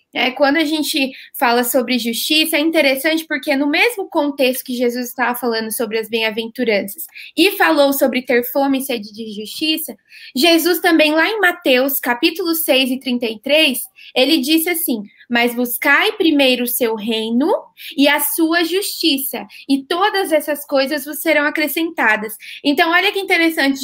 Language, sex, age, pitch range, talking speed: Portuguese, female, 20-39, 255-315 Hz, 155 wpm